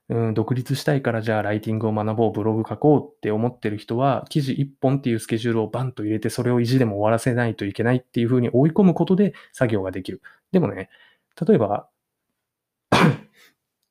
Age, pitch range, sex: 20-39, 110-140 Hz, male